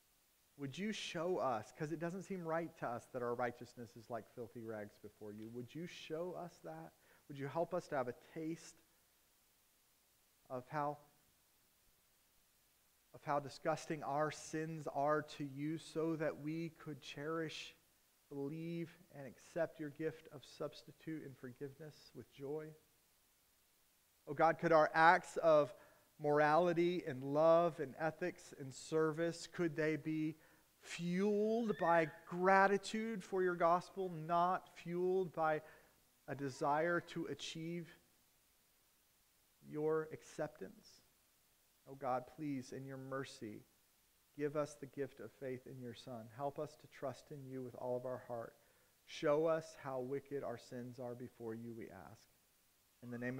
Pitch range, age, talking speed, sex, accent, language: 130-165 Hz, 40-59, 145 wpm, male, American, English